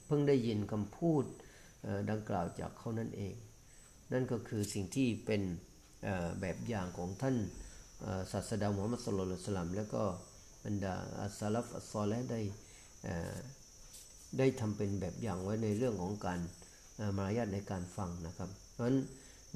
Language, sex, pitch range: Thai, male, 95-115 Hz